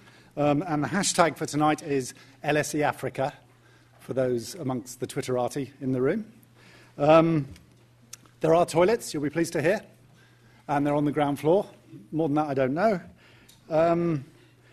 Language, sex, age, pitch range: English, male, 50-69, 130-165 Hz